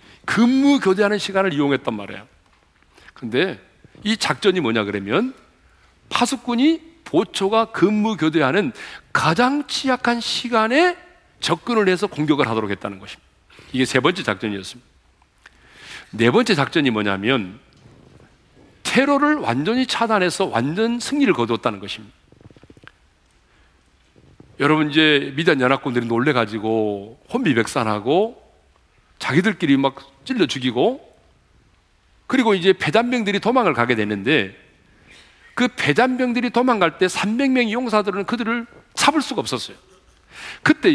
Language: Korean